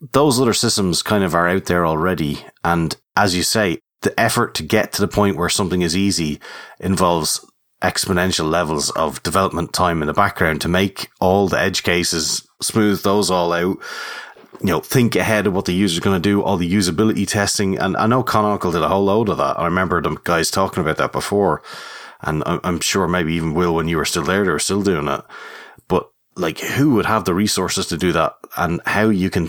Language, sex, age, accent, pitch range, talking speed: English, male, 30-49, Irish, 85-100 Hz, 215 wpm